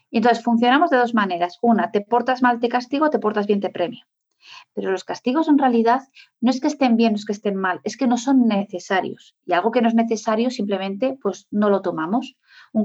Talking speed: 225 wpm